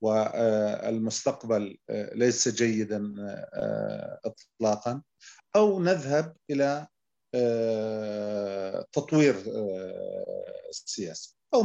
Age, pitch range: 40-59, 110-130 Hz